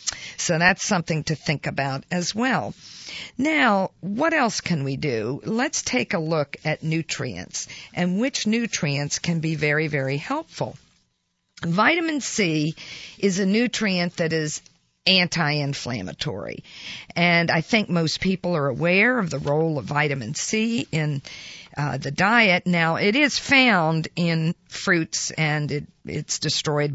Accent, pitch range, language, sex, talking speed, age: American, 150-190 Hz, English, female, 140 wpm, 50-69